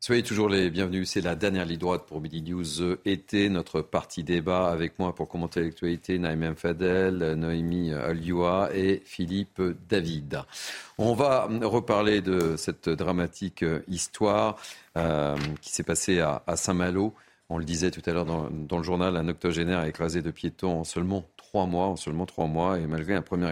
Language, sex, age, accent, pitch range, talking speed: French, male, 40-59, French, 85-100 Hz, 180 wpm